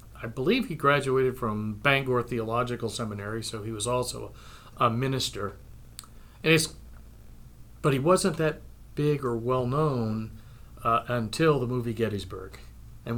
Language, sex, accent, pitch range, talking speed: English, male, American, 115-135 Hz, 130 wpm